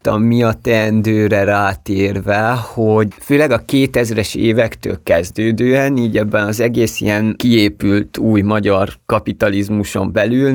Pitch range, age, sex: 100-115 Hz, 30-49, male